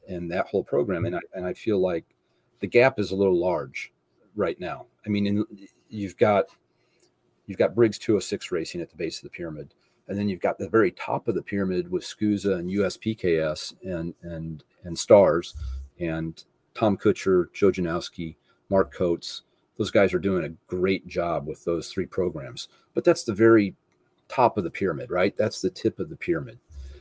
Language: English